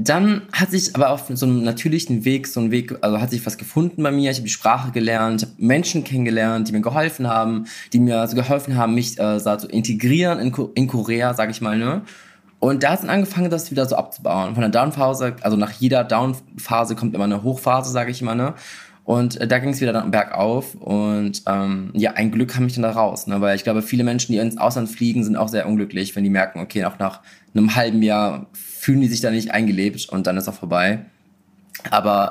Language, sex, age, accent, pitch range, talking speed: German, male, 20-39, German, 105-130 Hz, 235 wpm